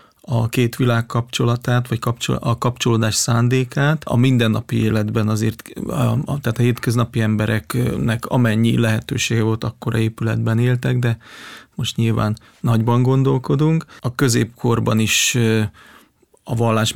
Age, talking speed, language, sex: 30-49, 125 wpm, Hungarian, male